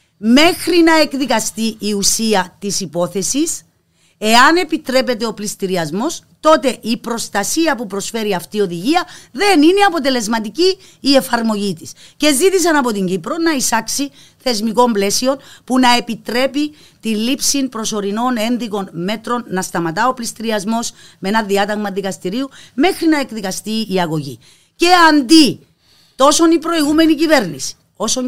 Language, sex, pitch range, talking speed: Greek, female, 205-280 Hz, 130 wpm